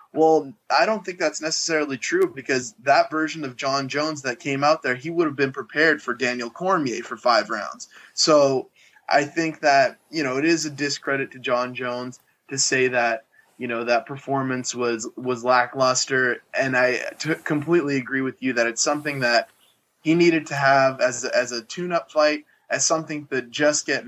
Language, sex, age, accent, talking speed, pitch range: English, male, 20-39, American, 190 wpm, 125-155 Hz